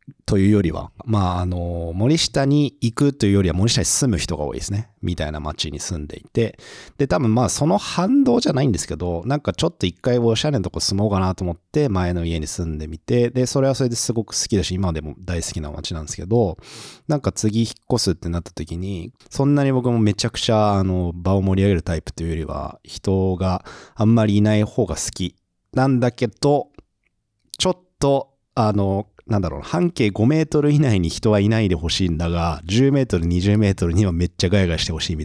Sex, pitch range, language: male, 85-115 Hz, Japanese